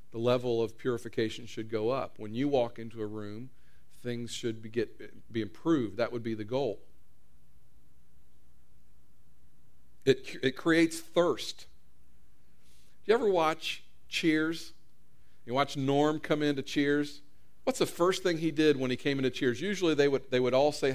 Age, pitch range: 50-69, 115-145 Hz